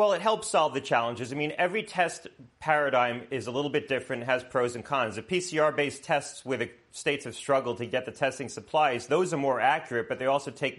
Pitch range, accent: 120-140 Hz, American